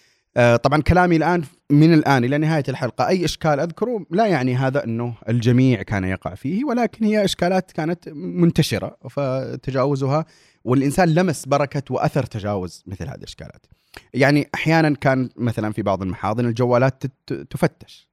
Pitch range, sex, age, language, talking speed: 115-150 Hz, male, 30-49, Arabic, 140 wpm